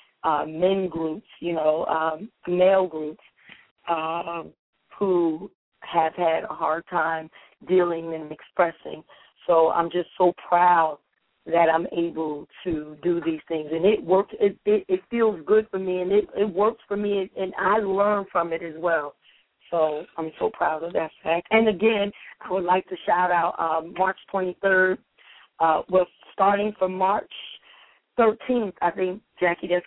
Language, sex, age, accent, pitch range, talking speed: English, female, 40-59, American, 165-190 Hz, 165 wpm